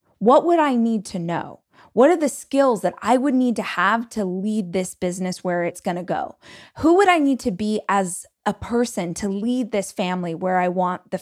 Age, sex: 20-39, female